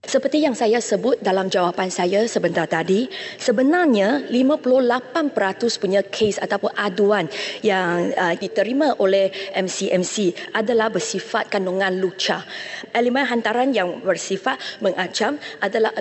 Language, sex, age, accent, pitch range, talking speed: English, female, 20-39, Malaysian, 195-245 Hz, 110 wpm